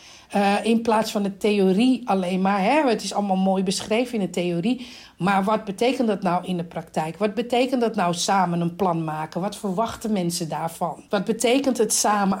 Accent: Dutch